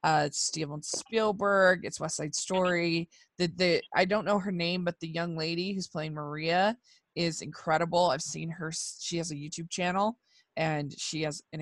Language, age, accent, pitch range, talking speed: English, 20-39, American, 155-195 Hz, 175 wpm